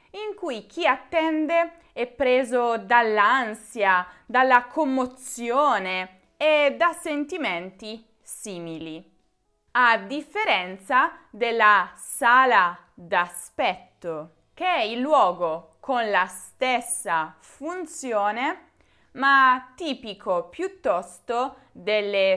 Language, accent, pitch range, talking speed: Italian, native, 185-275 Hz, 80 wpm